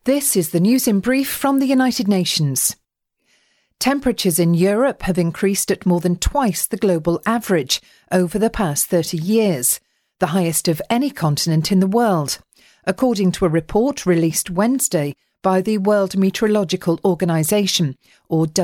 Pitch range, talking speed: 170-225 Hz, 150 wpm